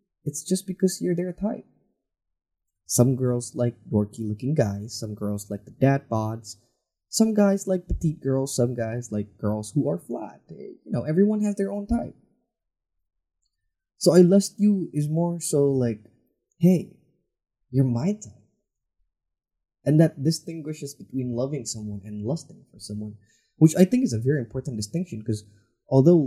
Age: 20-39